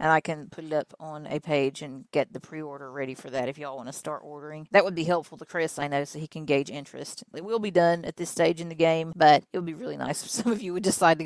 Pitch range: 150-185 Hz